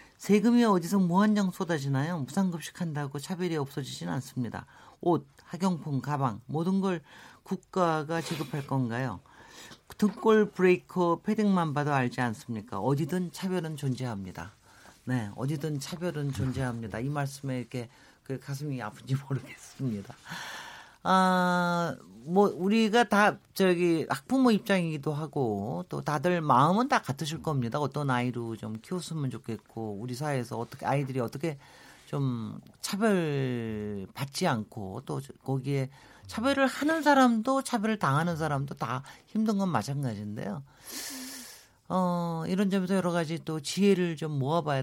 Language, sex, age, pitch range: Korean, male, 40-59, 130-185 Hz